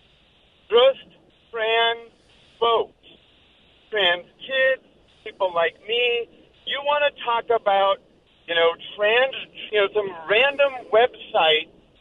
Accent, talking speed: American, 105 wpm